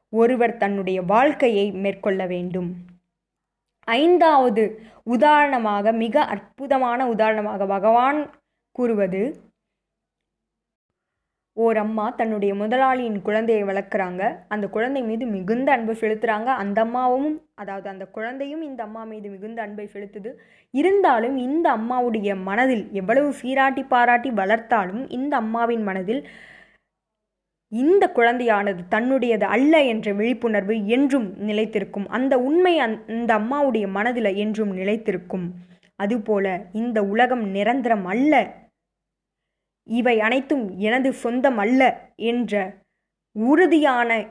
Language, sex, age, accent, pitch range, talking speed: Tamil, female, 20-39, native, 205-255 Hz, 95 wpm